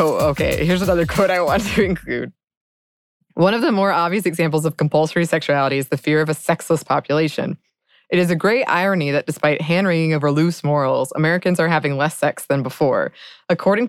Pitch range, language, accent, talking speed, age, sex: 145-185 Hz, English, American, 190 wpm, 20-39, female